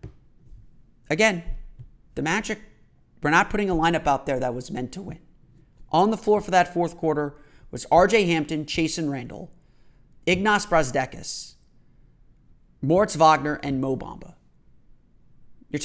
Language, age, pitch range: English, 30-49, 145-170 Hz